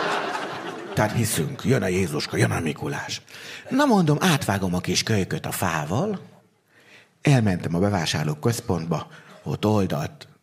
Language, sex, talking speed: Hungarian, male, 125 wpm